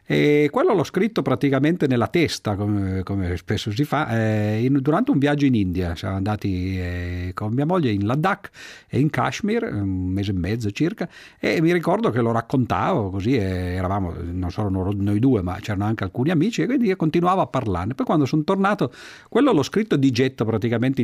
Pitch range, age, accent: 100-135 Hz, 50-69, native